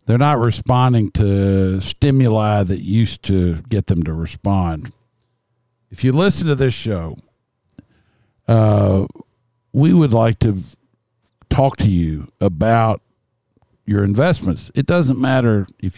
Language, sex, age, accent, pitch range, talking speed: English, male, 50-69, American, 100-125 Hz, 125 wpm